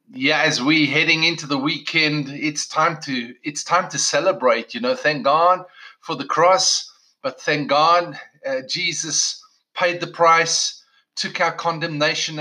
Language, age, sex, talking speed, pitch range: English, 30-49, male, 155 wpm, 145-185 Hz